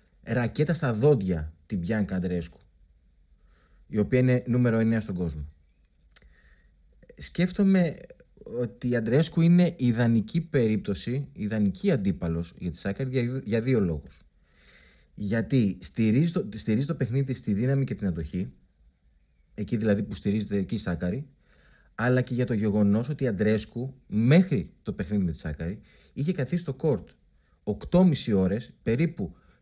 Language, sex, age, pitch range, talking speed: Greek, male, 30-49, 85-130 Hz, 140 wpm